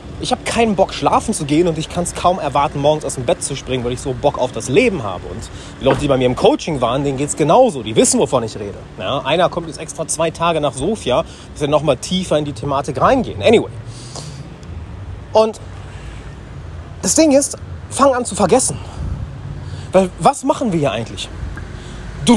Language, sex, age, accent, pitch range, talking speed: German, male, 30-49, German, 120-195 Hz, 205 wpm